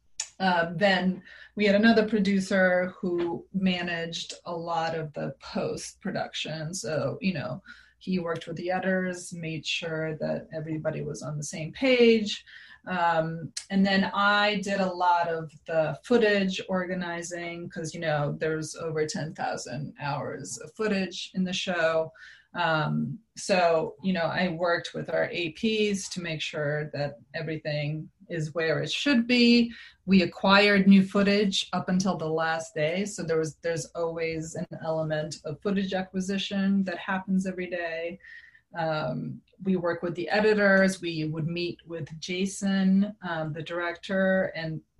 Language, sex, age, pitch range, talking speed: English, female, 30-49, 160-195 Hz, 150 wpm